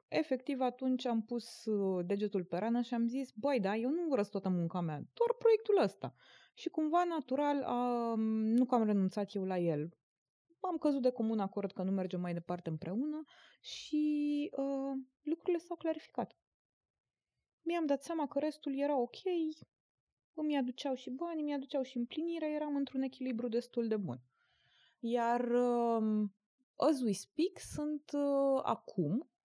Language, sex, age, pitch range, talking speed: Romanian, female, 20-39, 175-260 Hz, 155 wpm